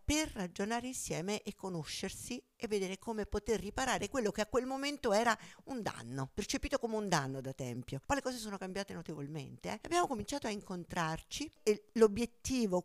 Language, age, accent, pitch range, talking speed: Italian, 50-69, native, 155-210 Hz, 175 wpm